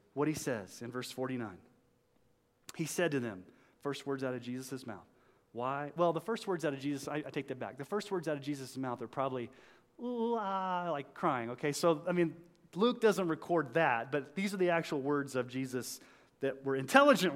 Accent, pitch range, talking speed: American, 120-165 Hz, 205 wpm